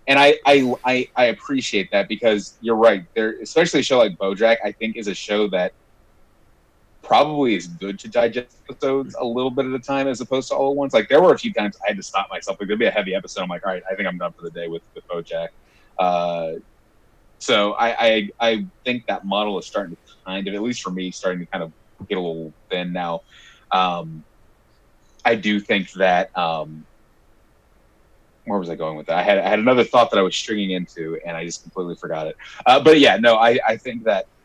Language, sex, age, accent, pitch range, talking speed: English, male, 30-49, American, 95-130 Hz, 235 wpm